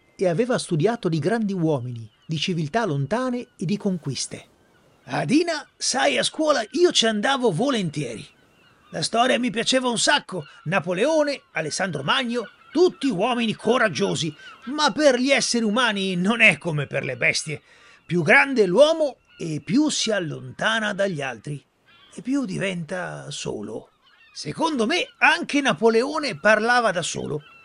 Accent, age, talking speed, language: native, 40-59, 140 wpm, Italian